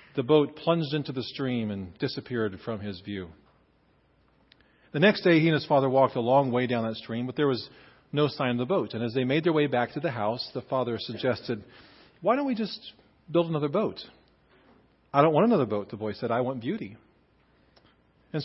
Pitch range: 125-170 Hz